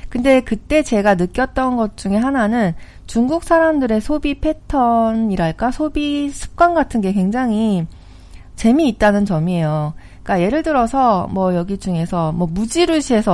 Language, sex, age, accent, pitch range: Korean, female, 40-59, native, 175-265 Hz